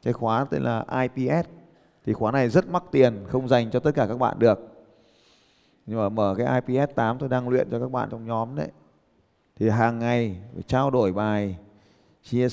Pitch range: 110-130 Hz